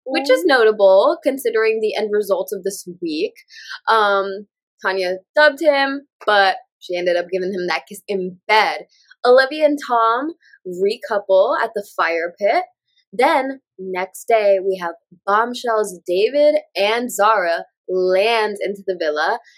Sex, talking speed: female, 140 wpm